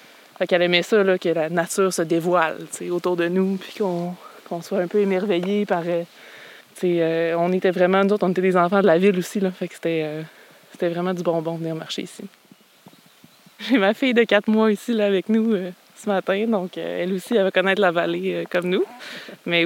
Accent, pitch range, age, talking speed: Canadian, 175-200 Hz, 20-39, 215 wpm